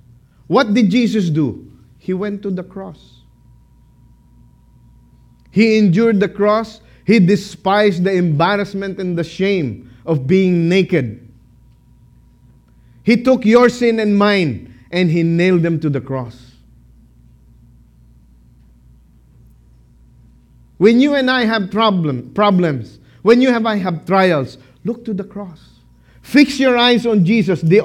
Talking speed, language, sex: 125 wpm, English, male